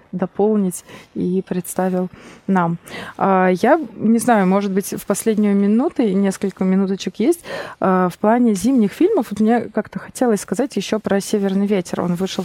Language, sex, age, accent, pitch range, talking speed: Russian, female, 20-39, native, 180-215 Hz, 155 wpm